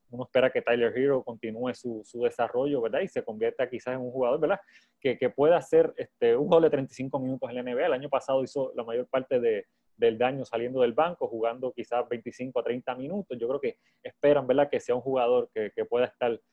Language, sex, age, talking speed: Spanish, male, 20-39, 230 wpm